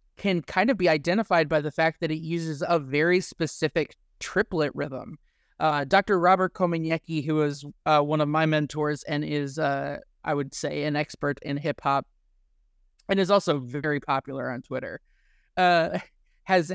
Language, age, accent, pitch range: English, 20-39, American, 150-180 Hz